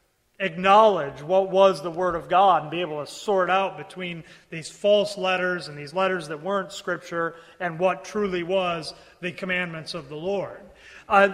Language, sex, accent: English, male, American